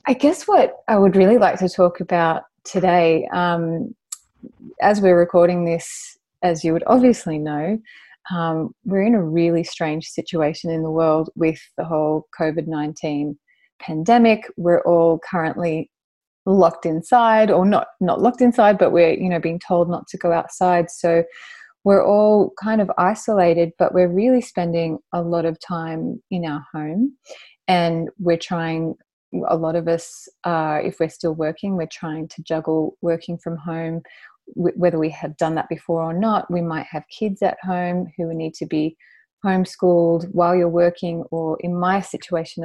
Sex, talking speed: female, 165 wpm